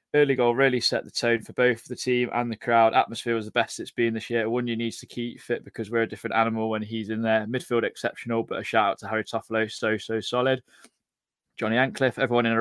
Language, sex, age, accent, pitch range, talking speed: English, male, 20-39, British, 110-125 Hz, 250 wpm